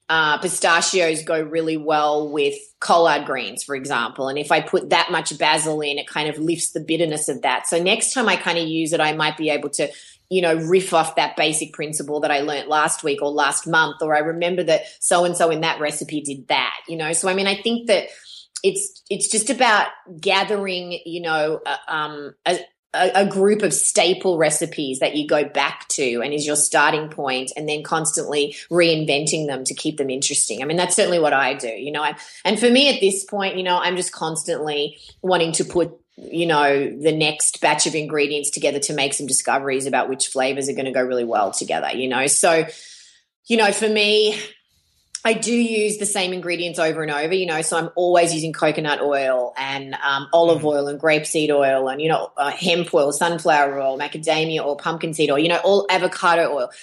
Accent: Australian